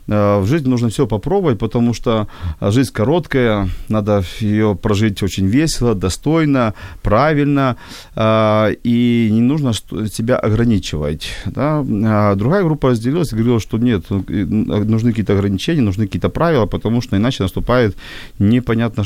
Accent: native